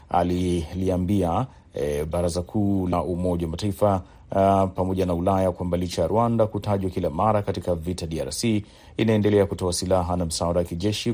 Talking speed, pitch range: 145 wpm, 90-110 Hz